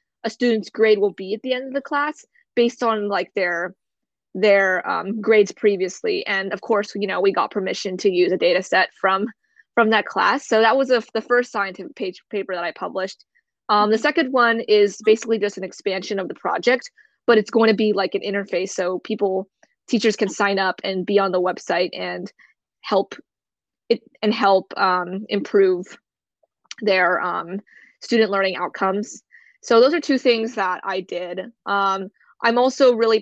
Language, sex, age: English, female, 20-39